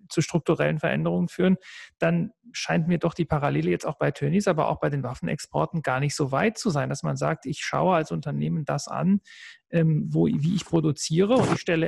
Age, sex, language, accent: 40-59, male, German, German